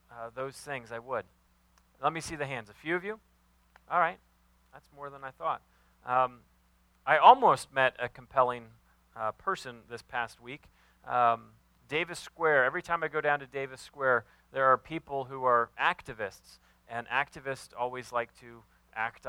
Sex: male